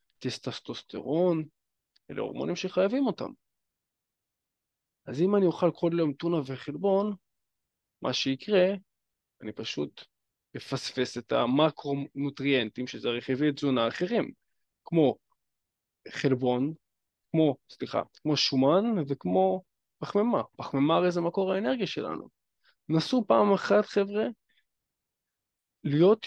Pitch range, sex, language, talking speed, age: 140-185 Hz, male, Hebrew, 100 wpm, 20-39